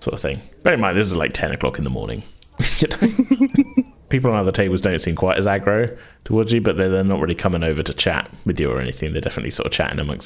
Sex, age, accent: male, 30-49, British